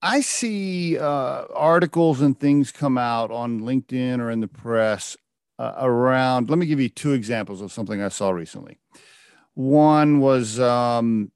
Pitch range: 115-140 Hz